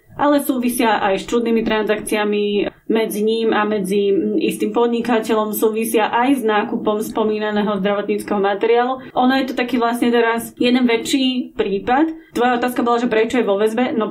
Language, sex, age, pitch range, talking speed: Slovak, female, 30-49, 215-245 Hz, 155 wpm